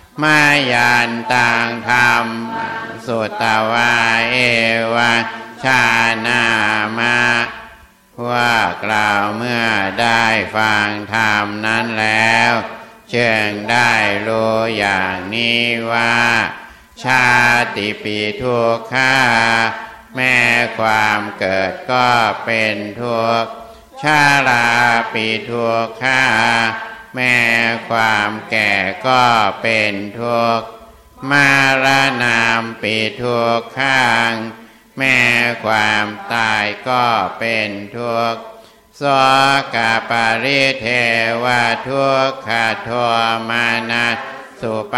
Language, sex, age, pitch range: Thai, male, 60-79, 110-120 Hz